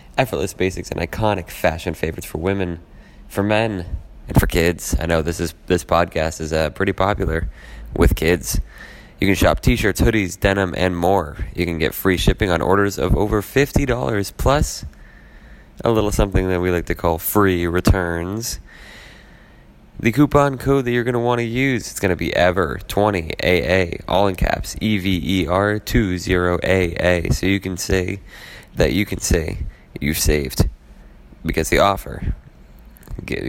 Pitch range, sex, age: 80-95 Hz, male, 20-39